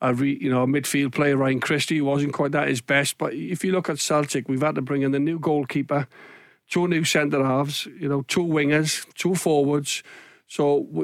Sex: male